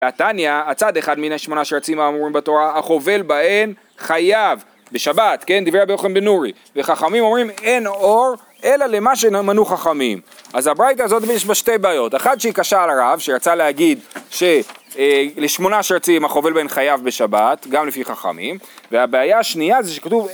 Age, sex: 30-49, male